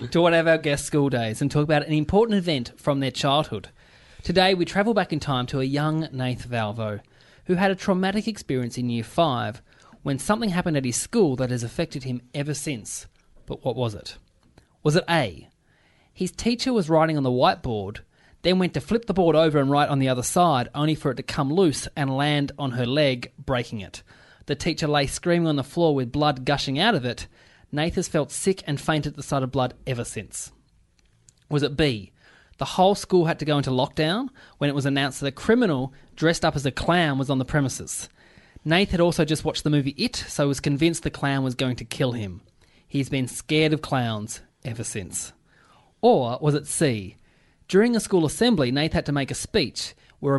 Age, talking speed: 20-39, 215 wpm